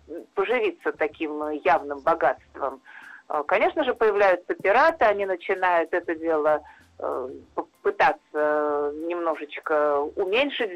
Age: 50-69